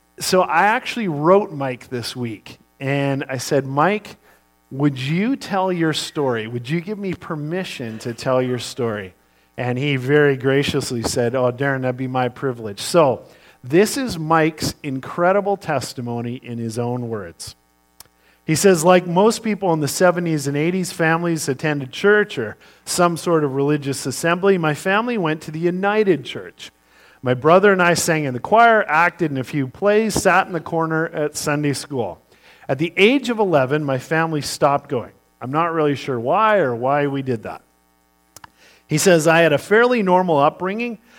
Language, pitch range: English, 130-185 Hz